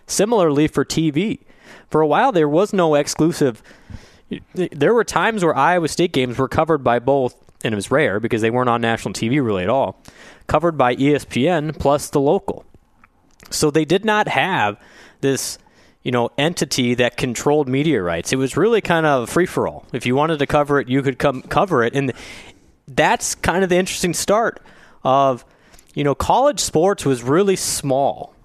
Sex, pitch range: male, 125-160 Hz